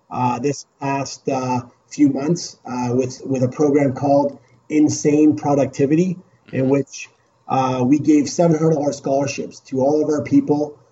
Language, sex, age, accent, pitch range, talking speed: English, male, 30-49, American, 130-155 Hz, 145 wpm